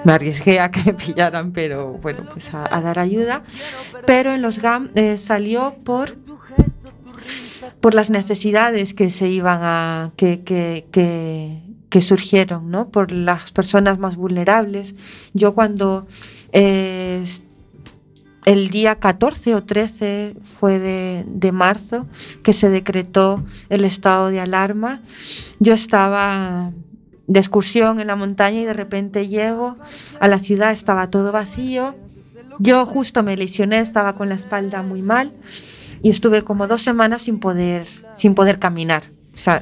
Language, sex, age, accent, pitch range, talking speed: Spanish, female, 30-49, Spanish, 185-220 Hz, 145 wpm